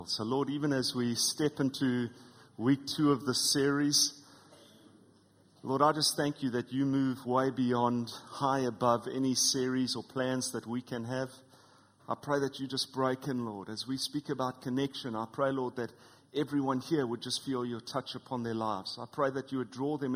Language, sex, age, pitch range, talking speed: English, male, 30-49, 125-140 Hz, 195 wpm